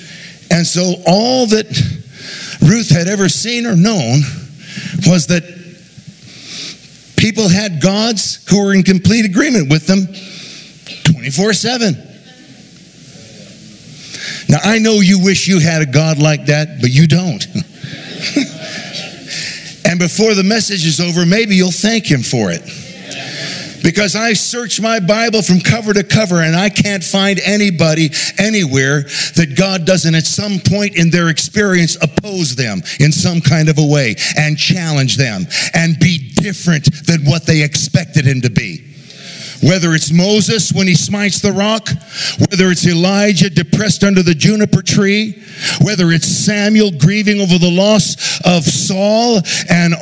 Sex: male